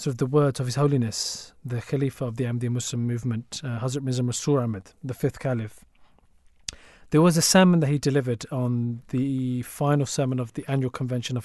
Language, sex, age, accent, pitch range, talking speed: English, male, 40-59, British, 120-145 Hz, 200 wpm